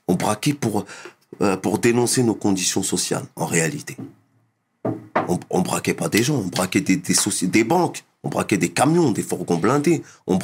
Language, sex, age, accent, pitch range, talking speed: French, male, 40-59, French, 110-160 Hz, 185 wpm